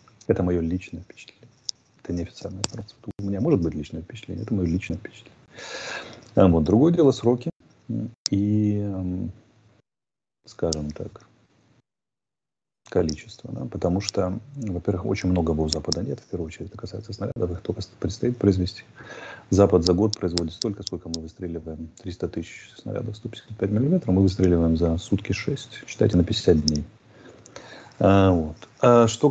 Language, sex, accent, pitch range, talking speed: Russian, male, native, 90-115 Hz, 140 wpm